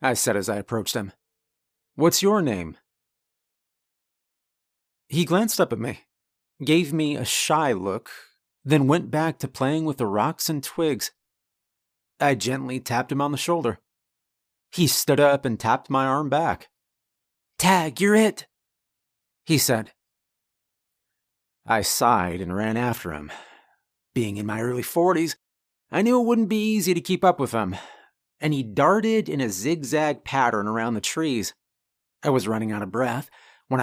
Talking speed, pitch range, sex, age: 155 wpm, 110-155 Hz, male, 30-49